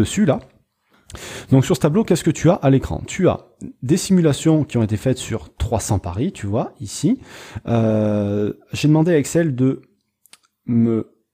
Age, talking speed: 30-49, 175 wpm